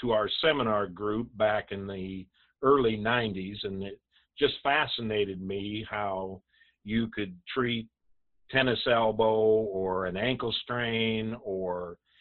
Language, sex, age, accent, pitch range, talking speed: English, male, 50-69, American, 95-120 Hz, 120 wpm